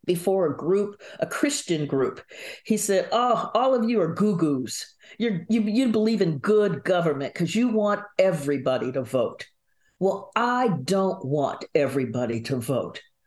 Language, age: English, 50-69